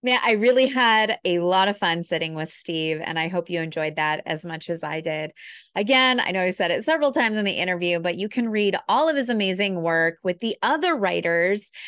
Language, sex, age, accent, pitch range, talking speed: English, female, 30-49, American, 180-245 Hz, 230 wpm